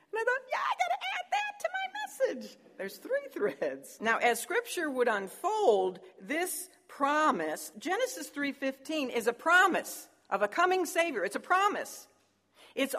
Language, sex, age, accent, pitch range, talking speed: English, female, 50-69, American, 205-325 Hz, 160 wpm